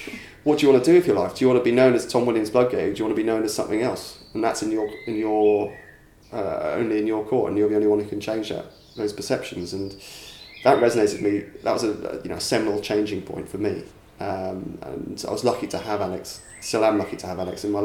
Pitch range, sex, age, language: 100-105 Hz, male, 30-49, English